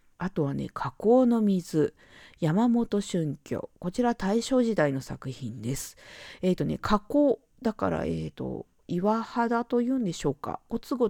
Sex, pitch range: female, 155-255 Hz